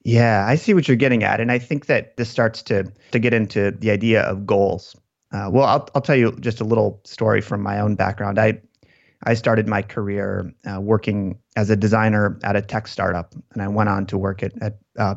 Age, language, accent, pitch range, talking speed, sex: 30-49, English, American, 100-120 Hz, 230 wpm, male